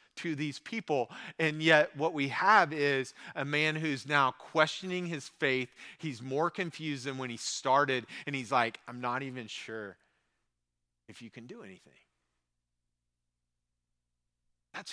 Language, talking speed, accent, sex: English, 145 wpm, American, male